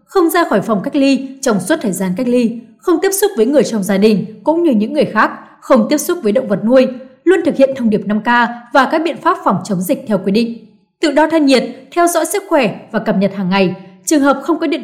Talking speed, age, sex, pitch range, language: 265 wpm, 20-39, female, 215-295 Hz, Vietnamese